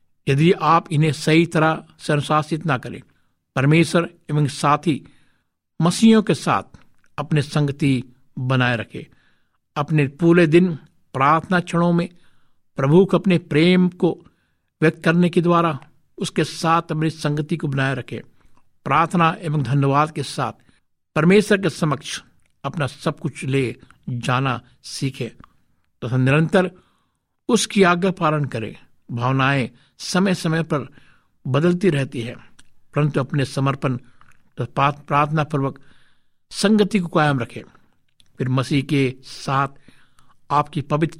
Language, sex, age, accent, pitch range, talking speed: Hindi, male, 60-79, native, 135-165 Hz, 120 wpm